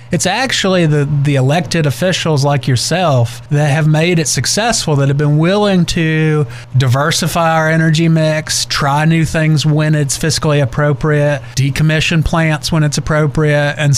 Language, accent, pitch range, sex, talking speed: English, American, 135-165 Hz, male, 150 wpm